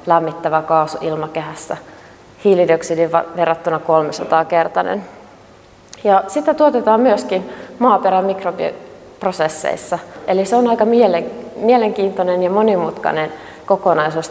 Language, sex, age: Finnish, female, 30-49